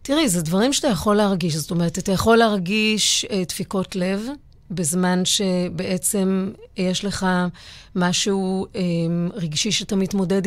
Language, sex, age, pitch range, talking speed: Hebrew, female, 30-49, 175-220 Hz, 130 wpm